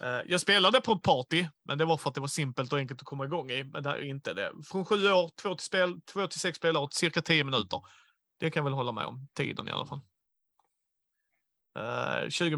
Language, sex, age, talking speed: Swedish, male, 30-49, 250 wpm